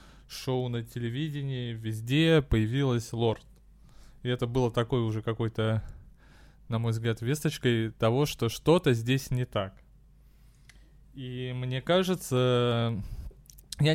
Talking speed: 115 wpm